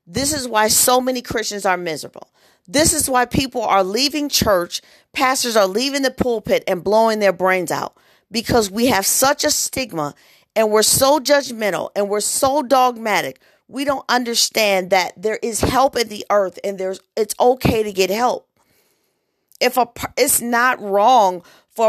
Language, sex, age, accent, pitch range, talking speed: English, female, 40-59, American, 195-250 Hz, 175 wpm